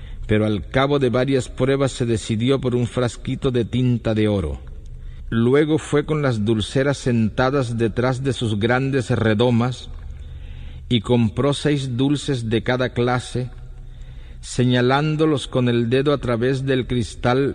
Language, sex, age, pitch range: Chinese, male, 50-69, 105-130 Hz